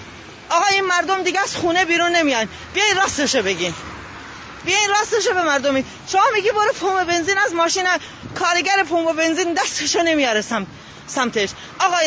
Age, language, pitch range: 30-49, English, 285-360 Hz